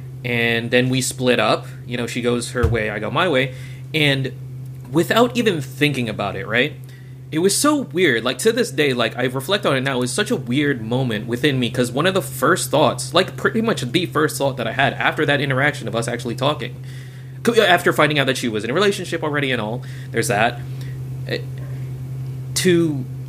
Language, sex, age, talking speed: English, male, 30-49, 210 wpm